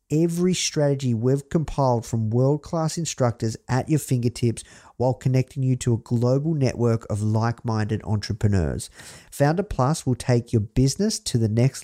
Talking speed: 145 wpm